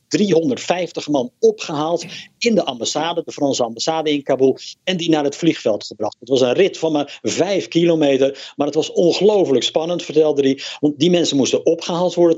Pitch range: 135-170 Hz